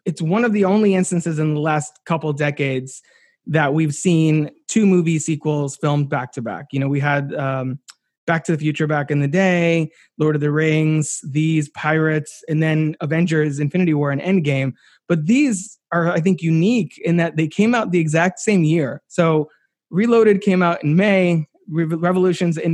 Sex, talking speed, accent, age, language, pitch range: male, 185 wpm, American, 20-39, English, 145-180 Hz